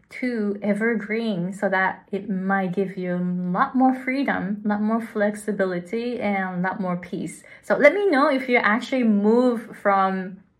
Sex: female